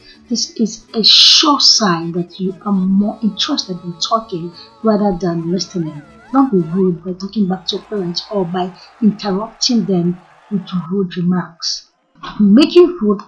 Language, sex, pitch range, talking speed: English, female, 180-225 Hz, 145 wpm